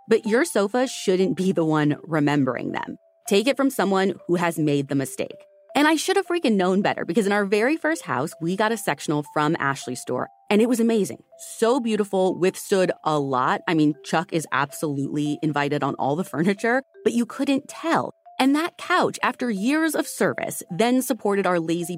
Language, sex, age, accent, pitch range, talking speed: English, female, 30-49, American, 160-245 Hz, 195 wpm